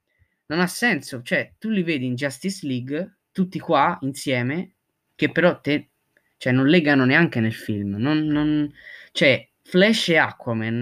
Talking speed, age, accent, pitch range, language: 155 wpm, 20-39, native, 125-175 Hz, Italian